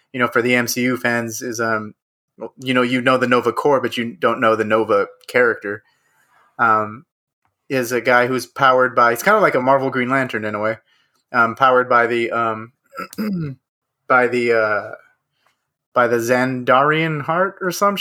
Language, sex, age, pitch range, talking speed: English, male, 30-49, 115-135 Hz, 180 wpm